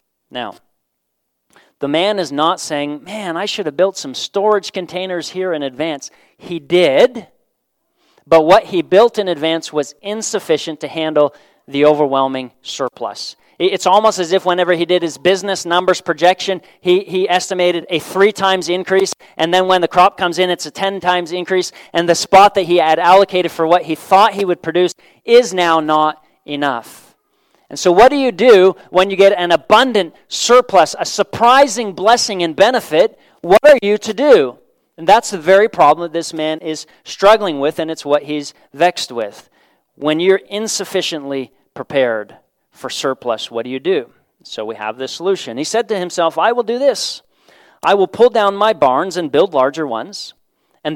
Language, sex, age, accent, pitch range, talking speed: English, male, 40-59, American, 155-195 Hz, 180 wpm